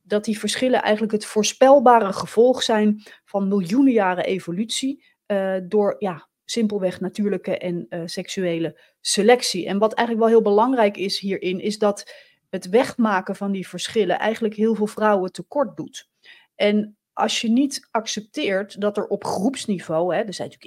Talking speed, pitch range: 160 wpm, 185-225 Hz